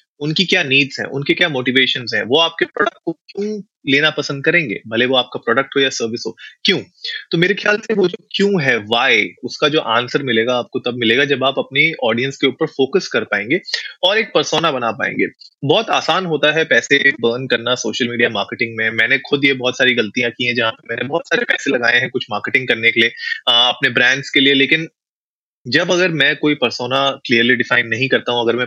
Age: 30-49